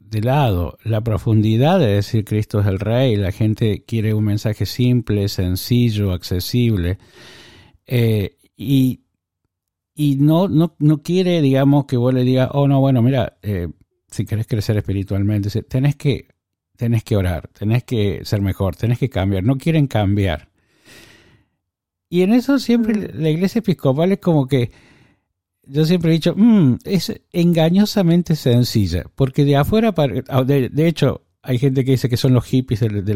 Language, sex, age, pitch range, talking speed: Spanish, male, 50-69, 100-140 Hz, 165 wpm